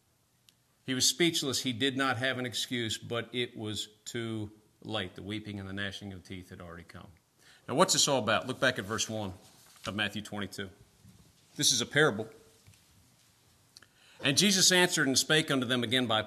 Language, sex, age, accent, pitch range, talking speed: English, male, 40-59, American, 105-135 Hz, 185 wpm